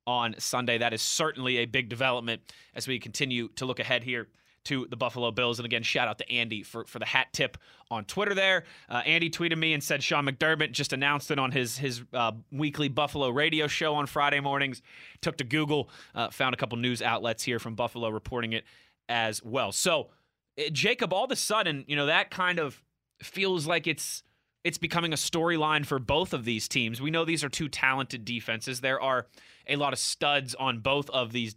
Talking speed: 210 wpm